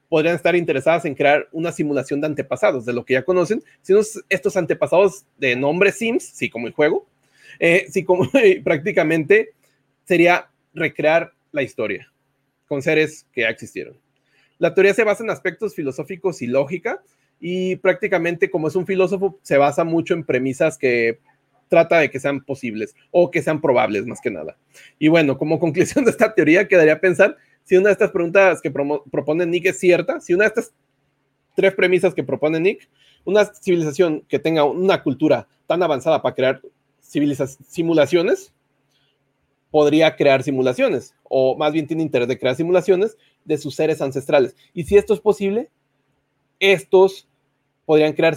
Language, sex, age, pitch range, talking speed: Spanish, male, 30-49, 140-185 Hz, 170 wpm